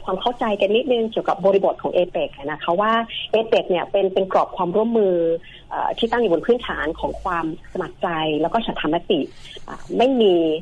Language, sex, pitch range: Thai, female, 165-210 Hz